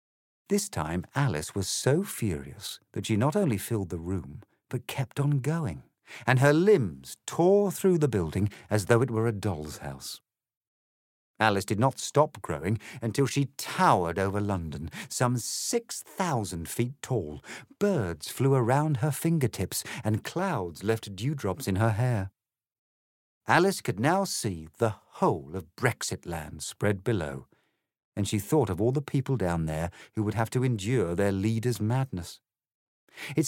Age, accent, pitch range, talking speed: 50-69, British, 90-140 Hz, 155 wpm